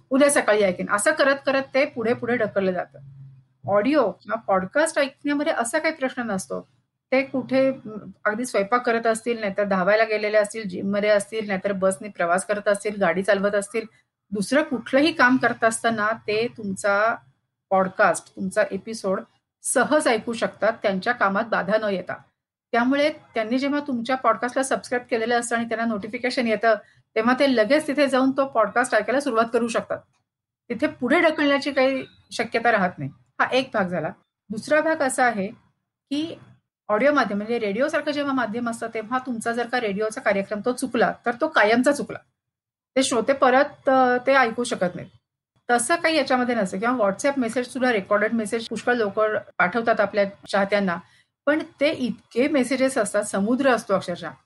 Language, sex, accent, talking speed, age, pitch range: Marathi, female, native, 140 wpm, 40-59, 205-265 Hz